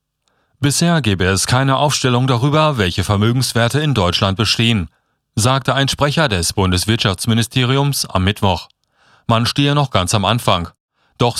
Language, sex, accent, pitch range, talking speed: German, male, German, 100-130 Hz, 130 wpm